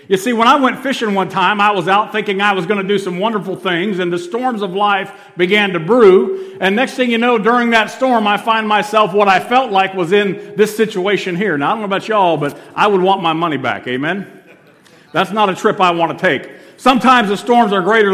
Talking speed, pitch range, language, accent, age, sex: 250 wpm, 170-225 Hz, English, American, 50-69, male